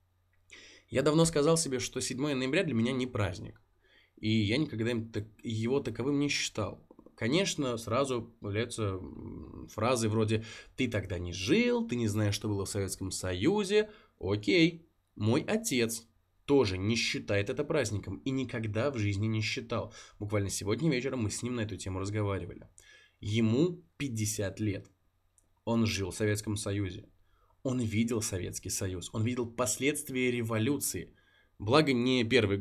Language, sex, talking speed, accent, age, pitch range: Russian, male, 145 wpm, native, 20-39, 100-130 Hz